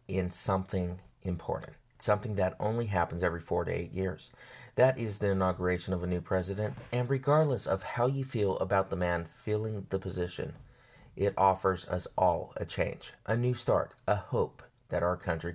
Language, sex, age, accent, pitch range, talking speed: English, male, 30-49, American, 95-125 Hz, 180 wpm